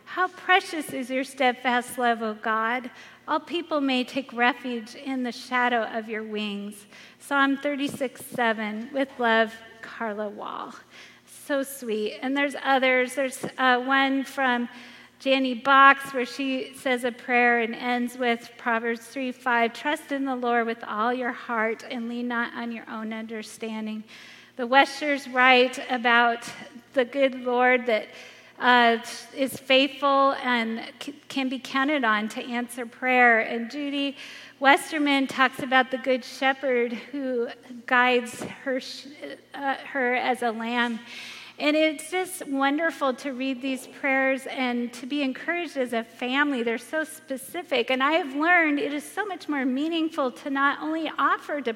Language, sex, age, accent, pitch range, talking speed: English, female, 40-59, American, 235-275 Hz, 150 wpm